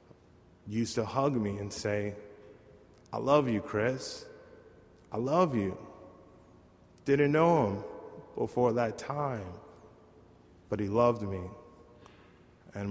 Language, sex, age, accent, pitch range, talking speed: English, male, 30-49, American, 100-115 Hz, 110 wpm